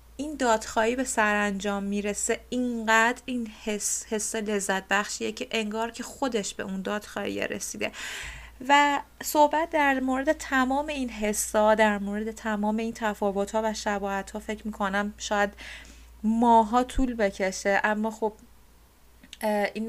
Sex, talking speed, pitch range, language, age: female, 135 wpm, 200-235 Hz, Persian, 30-49